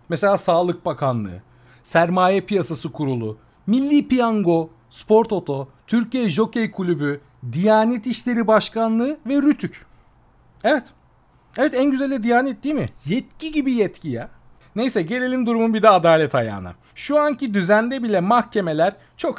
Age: 40-59